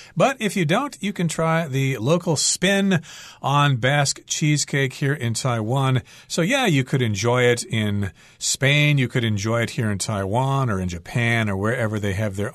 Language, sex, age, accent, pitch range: Chinese, male, 40-59, American, 115-160 Hz